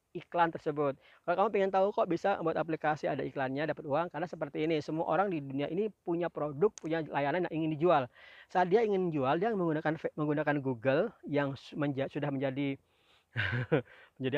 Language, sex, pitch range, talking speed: Indonesian, male, 140-175 Hz, 175 wpm